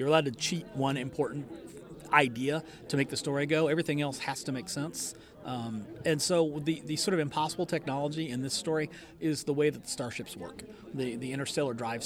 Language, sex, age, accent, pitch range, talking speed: English, male, 40-59, American, 115-155 Hz, 205 wpm